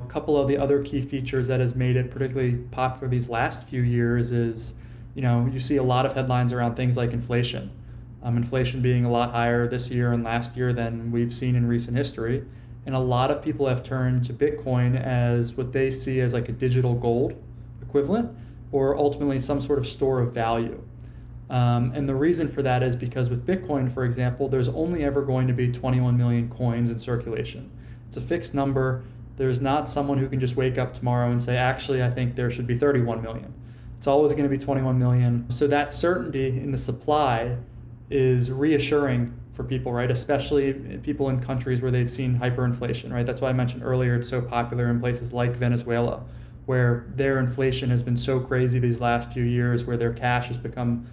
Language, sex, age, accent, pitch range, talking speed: English, male, 20-39, American, 120-130 Hz, 205 wpm